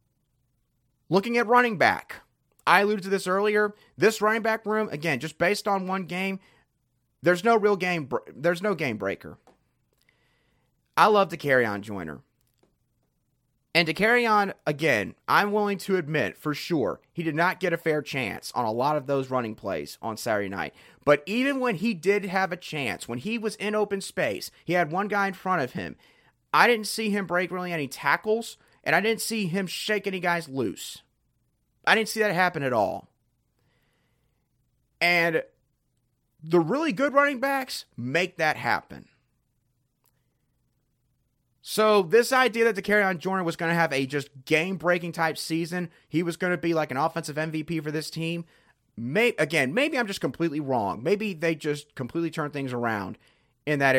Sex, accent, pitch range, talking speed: male, American, 140-205 Hz, 180 wpm